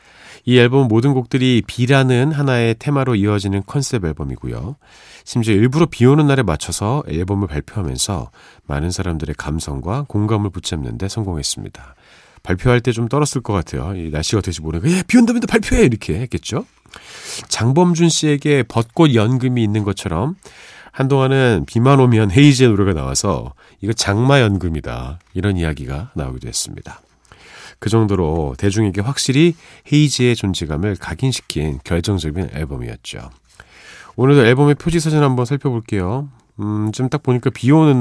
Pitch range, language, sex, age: 85-130 Hz, Korean, male, 40-59